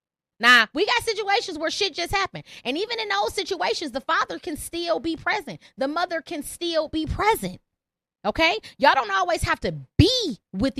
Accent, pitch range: American, 215-340 Hz